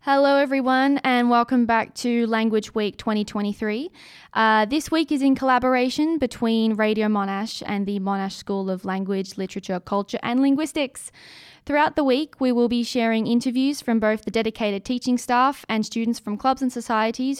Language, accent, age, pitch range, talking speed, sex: English, Australian, 20-39, 205-245 Hz, 165 wpm, female